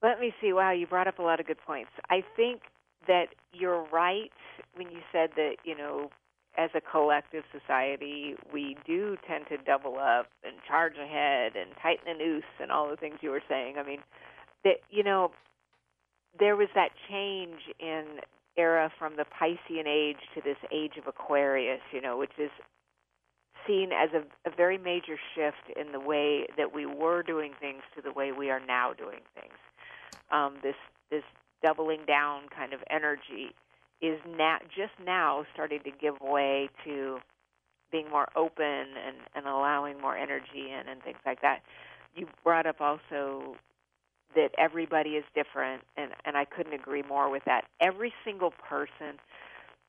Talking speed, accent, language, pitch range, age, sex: 170 wpm, American, English, 140-170 Hz, 50-69, female